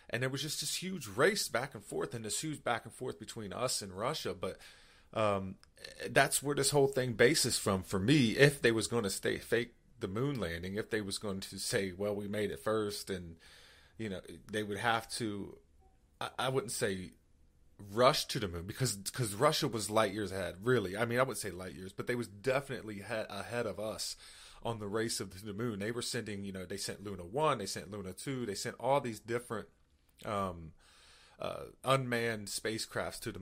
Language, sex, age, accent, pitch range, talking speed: English, male, 30-49, American, 95-120 Hz, 215 wpm